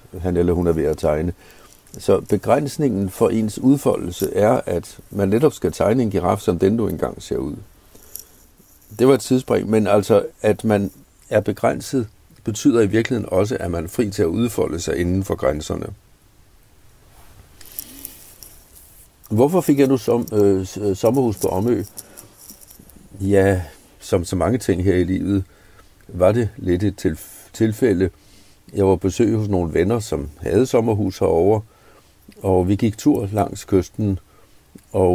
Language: Danish